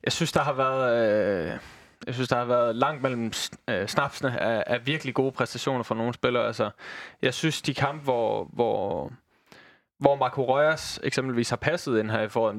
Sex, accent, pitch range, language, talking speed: male, native, 120-140 Hz, Danish, 190 wpm